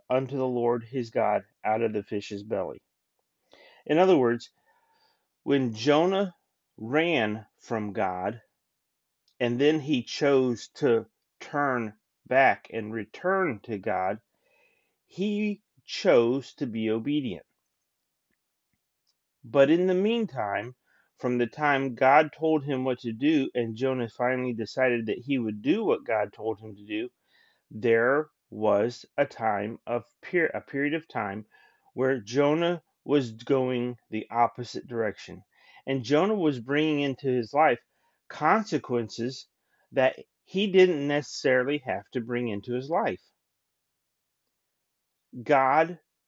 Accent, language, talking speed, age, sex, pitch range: American, English, 125 wpm, 30-49, male, 115-150 Hz